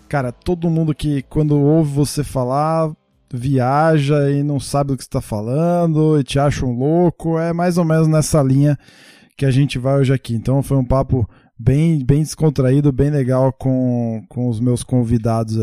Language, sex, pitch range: Portuguese, male, 125-155 Hz